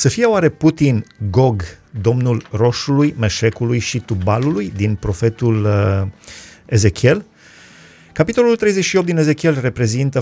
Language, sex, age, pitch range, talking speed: Romanian, male, 30-49, 110-145 Hz, 110 wpm